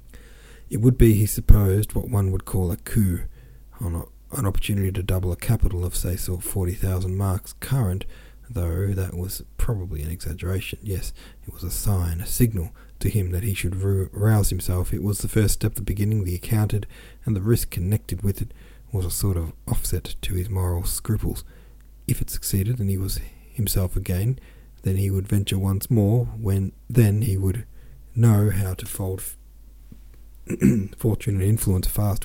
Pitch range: 90-110 Hz